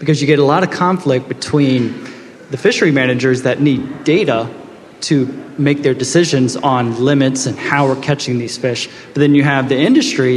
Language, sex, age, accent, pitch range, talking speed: English, male, 20-39, American, 130-155 Hz, 185 wpm